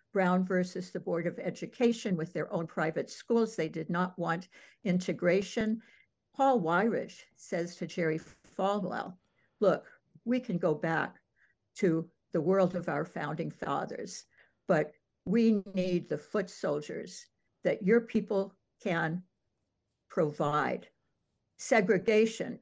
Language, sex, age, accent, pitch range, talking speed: English, female, 60-79, American, 170-210 Hz, 120 wpm